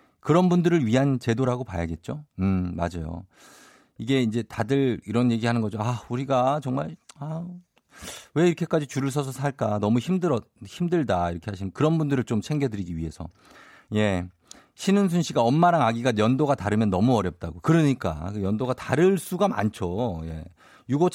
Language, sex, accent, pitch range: Korean, male, native, 110-165 Hz